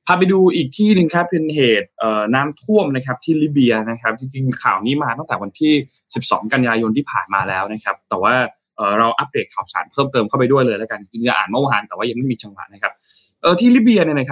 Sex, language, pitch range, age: male, Thai, 115-155 Hz, 20-39